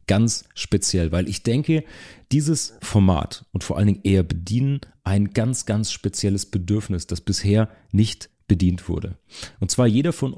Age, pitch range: 40-59, 95-110 Hz